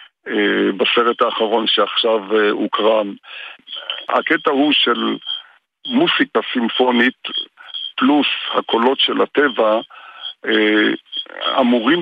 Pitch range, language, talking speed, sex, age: 105-130 Hz, Hebrew, 70 wpm, male, 50-69